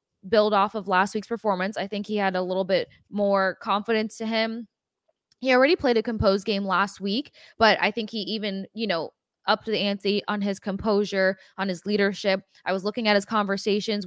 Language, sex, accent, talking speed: English, female, American, 205 wpm